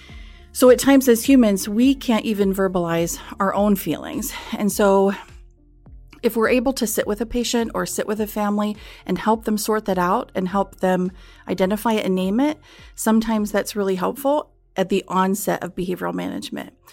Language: English